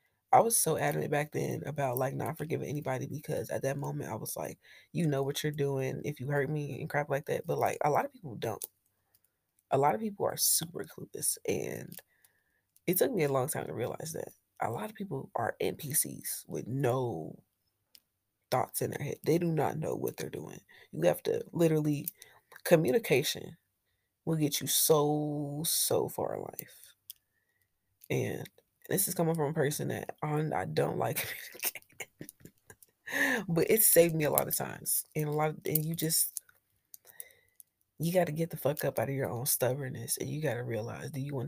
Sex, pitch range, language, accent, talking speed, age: female, 135-160 Hz, English, American, 190 wpm, 20-39